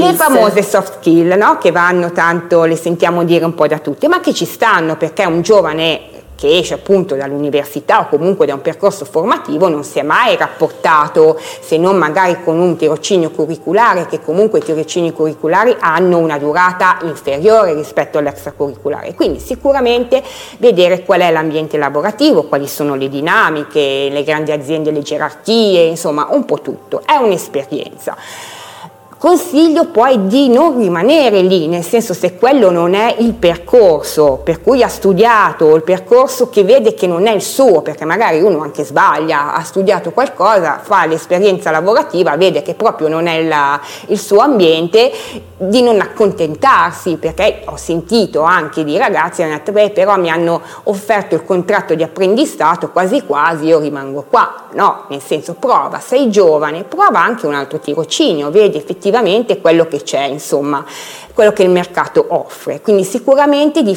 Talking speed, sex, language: 165 wpm, female, Italian